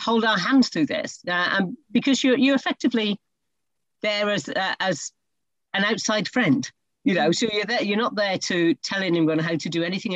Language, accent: English, British